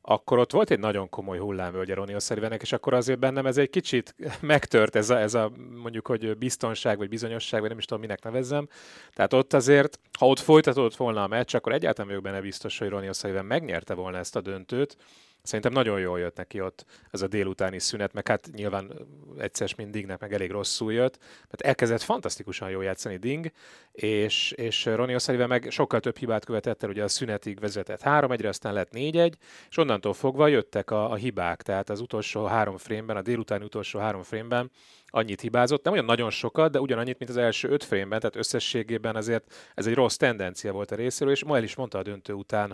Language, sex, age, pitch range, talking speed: Hungarian, male, 30-49, 100-125 Hz, 200 wpm